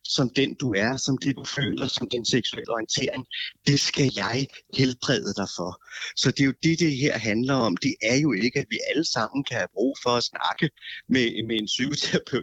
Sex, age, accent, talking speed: male, 30-49, native, 215 wpm